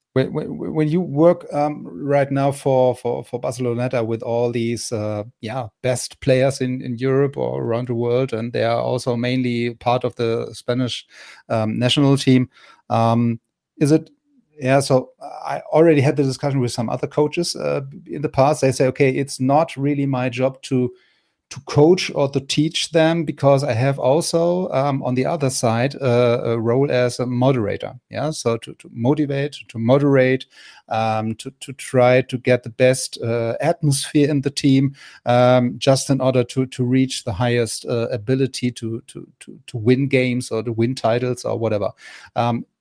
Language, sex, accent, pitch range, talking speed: German, male, German, 120-145 Hz, 180 wpm